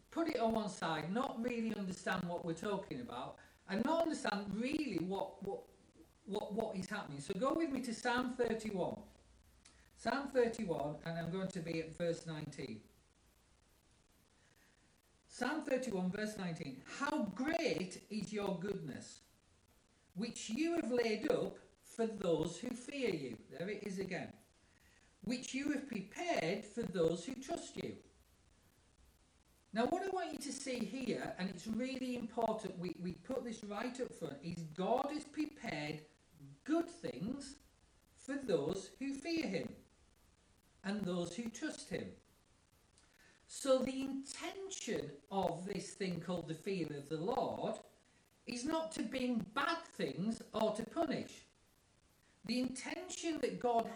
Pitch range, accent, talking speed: 180-260 Hz, British, 145 wpm